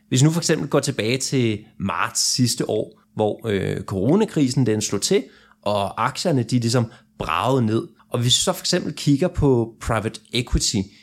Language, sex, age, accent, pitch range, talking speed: Danish, male, 30-49, native, 110-150 Hz, 175 wpm